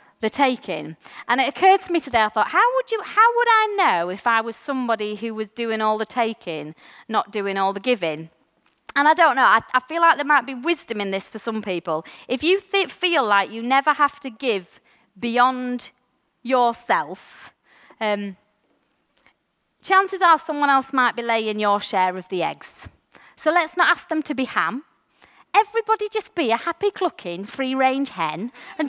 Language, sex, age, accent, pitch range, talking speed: English, female, 30-49, British, 205-335 Hz, 190 wpm